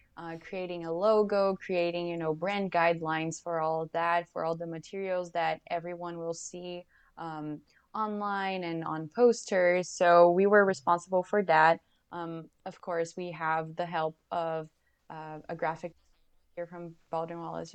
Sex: female